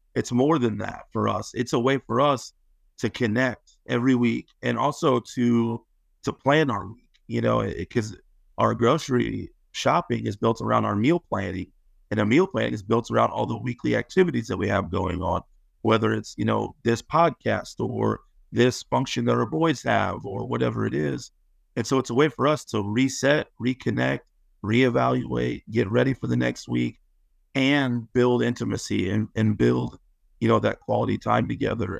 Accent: American